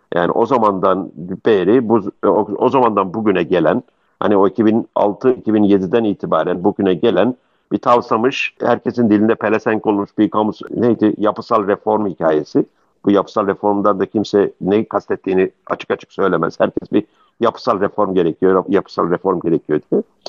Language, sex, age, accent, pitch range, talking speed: Turkish, male, 50-69, native, 100-115 Hz, 135 wpm